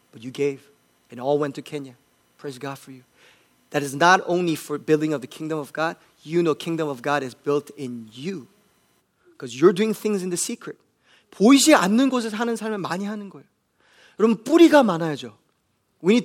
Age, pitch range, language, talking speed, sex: 30-49, 150-215 Hz, English, 150 wpm, male